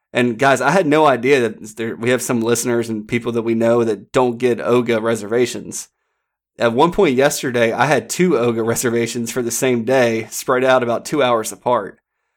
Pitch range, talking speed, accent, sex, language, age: 115-130 Hz, 200 wpm, American, male, English, 30-49